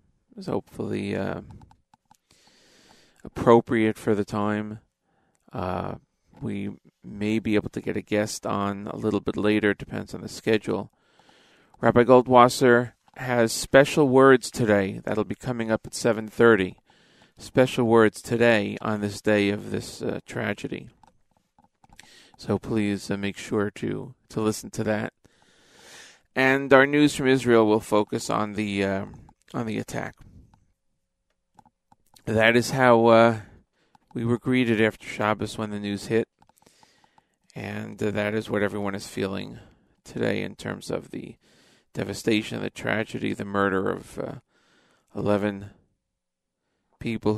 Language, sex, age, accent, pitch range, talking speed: English, male, 40-59, American, 100-115 Hz, 135 wpm